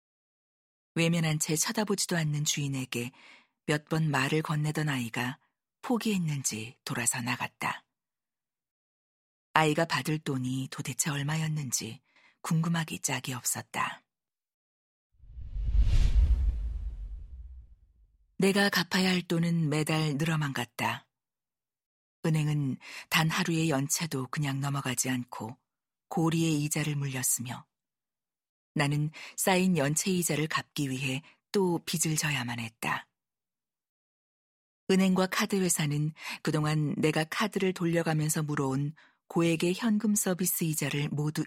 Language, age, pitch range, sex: Korean, 40-59, 130-170 Hz, female